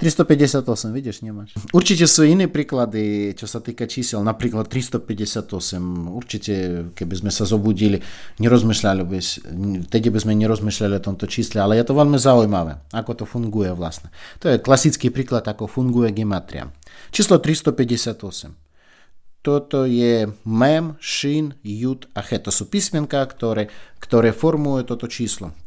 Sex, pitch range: male, 105-135 Hz